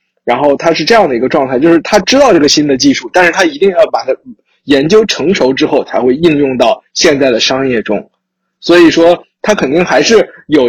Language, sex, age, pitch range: Chinese, male, 20-39, 135-215 Hz